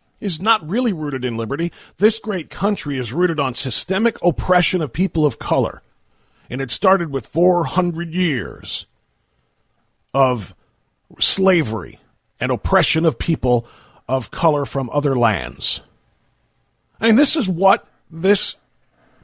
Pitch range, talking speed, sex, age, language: 130-190 Hz, 125 wpm, male, 50-69, English